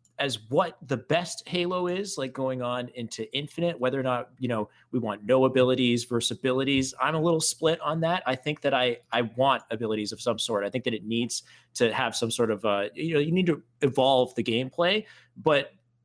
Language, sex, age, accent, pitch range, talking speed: English, male, 30-49, American, 115-140 Hz, 215 wpm